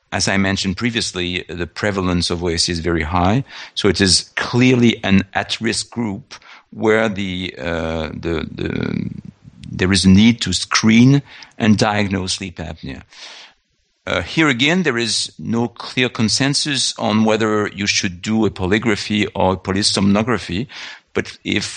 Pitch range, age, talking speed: 90-110 Hz, 50-69, 145 wpm